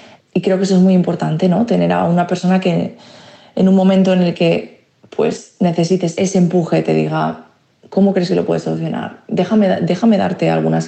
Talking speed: 195 wpm